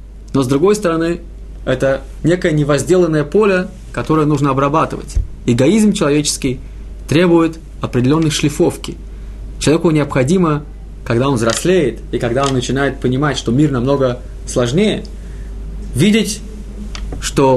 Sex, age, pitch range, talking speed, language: male, 20-39, 140-185 Hz, 110 wpm, Russian